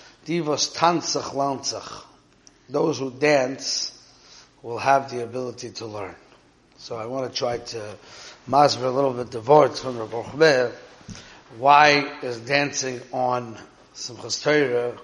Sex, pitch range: male, 115-145 Hz